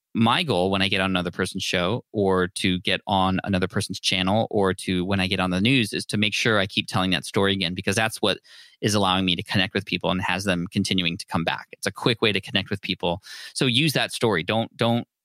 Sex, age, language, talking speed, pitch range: male, 20-39, English, 255 wpm, 95-115 Hz